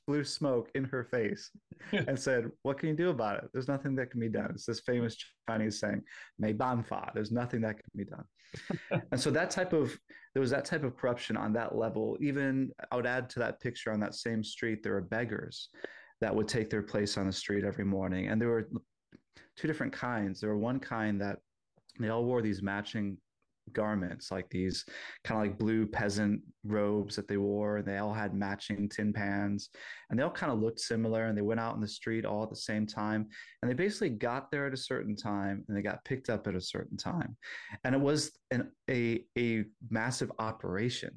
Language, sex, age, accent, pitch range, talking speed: English, male, 20-39, American, 105-125 Hz, 215 wpm